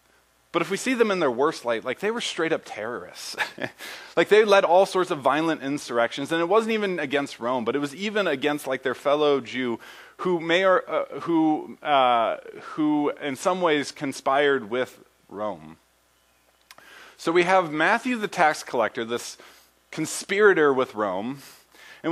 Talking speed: 170 wpm